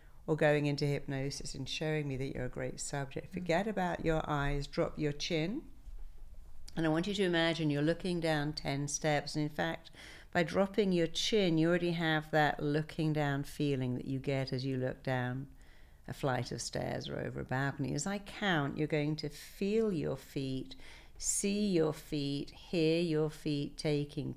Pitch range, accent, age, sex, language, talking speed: 140-155 Hz, British, 60-79, female, English, 185 wpm